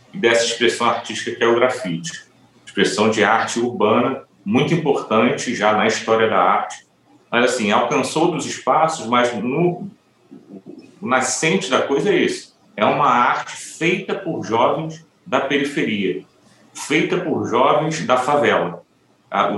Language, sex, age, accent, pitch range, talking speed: Portuguese, male, 40-59, Brazilian, 115-160 Hz, 140 wpm